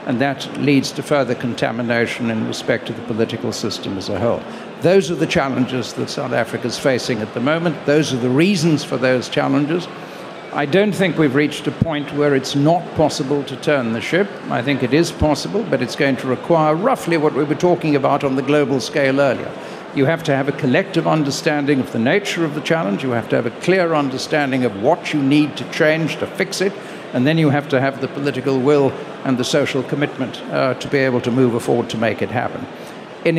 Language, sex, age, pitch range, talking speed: English, male, 60-79, 130-165 Hz, 225 wpm